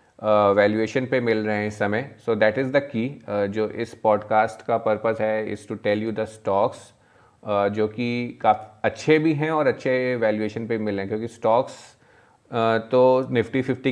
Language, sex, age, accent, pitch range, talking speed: Hindi, male, 30-49, native, 105-125 Hz, 180 wpm